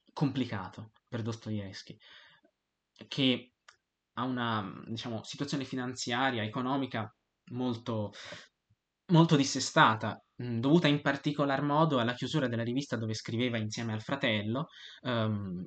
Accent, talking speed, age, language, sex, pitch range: native, 105 wpm, 20-39, Italian, male, 110-140 Hz